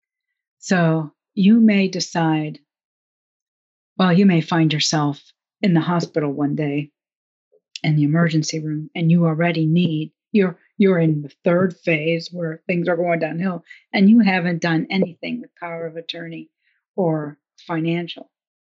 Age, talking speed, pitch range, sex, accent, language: 50-69, 140 wpm, 155-185 Hz, female, American, English